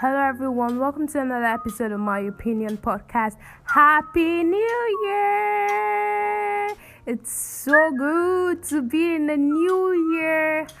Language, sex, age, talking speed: English, female, 10-29, 120 wpm